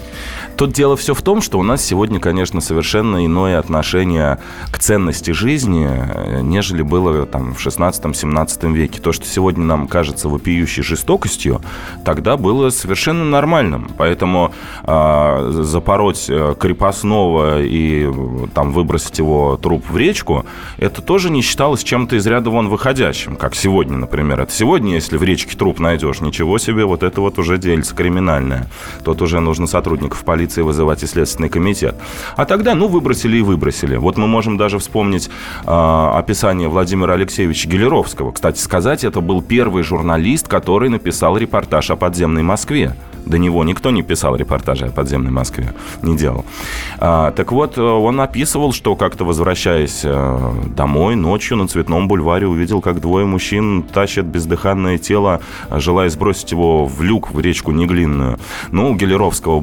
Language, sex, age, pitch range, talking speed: Russian, male, 20-39, 75-95 Hz, 150 wpm